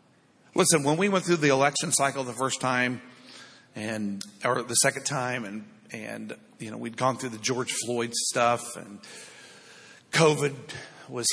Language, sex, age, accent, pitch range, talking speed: English, male, 50-69, American, 125-150 Hz, 160 wpm